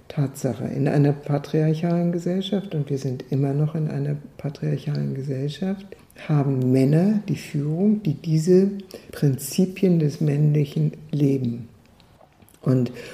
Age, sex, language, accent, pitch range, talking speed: 60-79, female, German, German, 140-170 Hz, 115 wpm